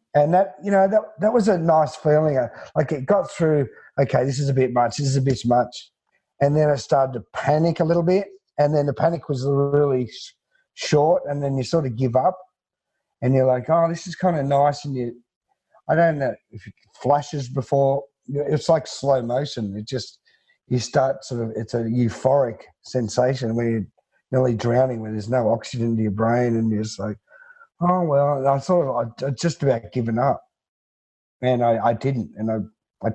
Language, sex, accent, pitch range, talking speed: English, male, Australian, 115-145 Hz, 200 wpm